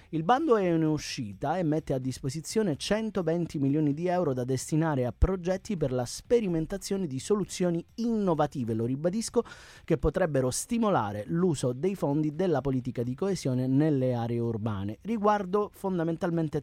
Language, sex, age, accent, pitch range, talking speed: Italian, male, 30-49, native, 130-190 Hz, 145 wpm